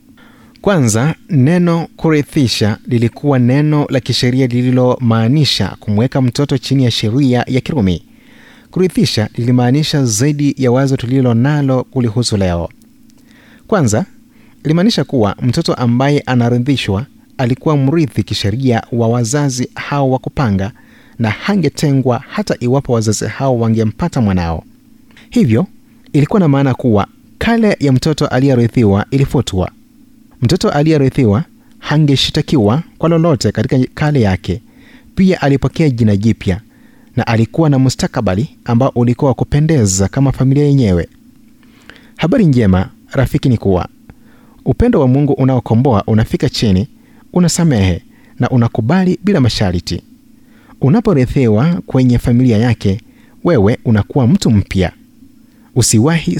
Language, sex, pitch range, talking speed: Swahili, male, 115-165 Hz, 110 wpm